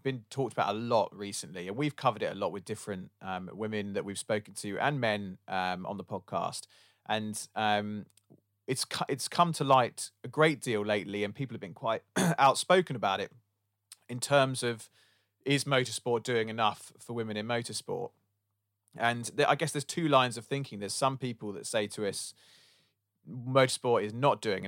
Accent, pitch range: British, 100-130 Hz